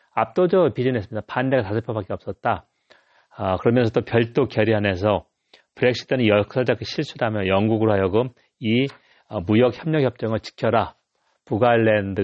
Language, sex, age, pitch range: Korean, male, 40-59, 105-130 Hz